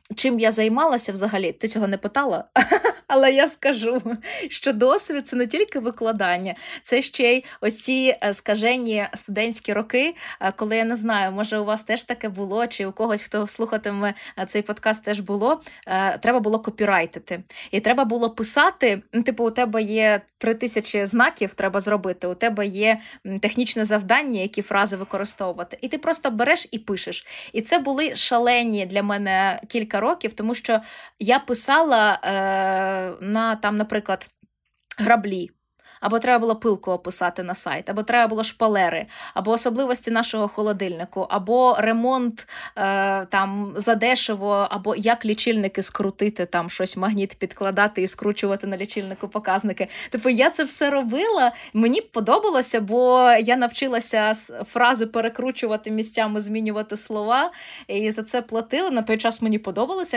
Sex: female